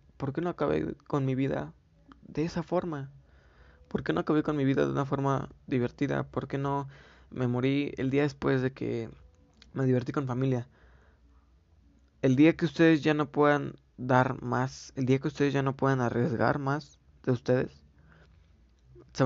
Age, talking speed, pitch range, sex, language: 20-39, 175 wpm, 85-140 Hz, male, Spanish